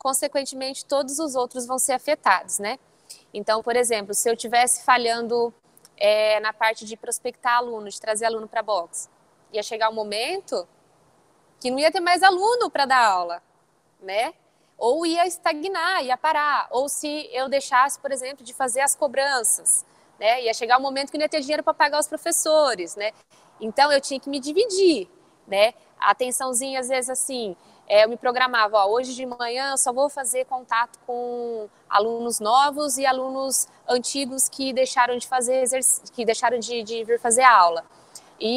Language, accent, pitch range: Portuguese, Brazilian, 235-290 Hz